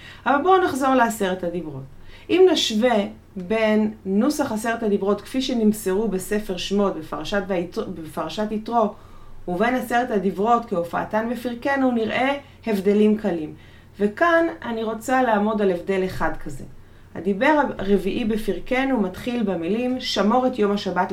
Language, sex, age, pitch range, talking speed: Hebrew, female, 30-49, 185-255 Hz, 120 wpm